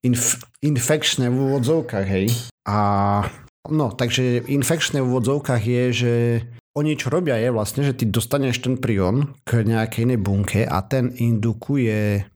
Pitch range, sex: 110-125 Hz, male